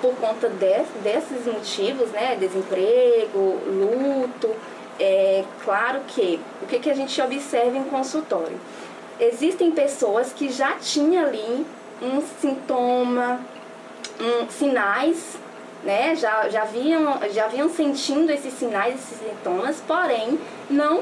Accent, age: Brazilian, 20-39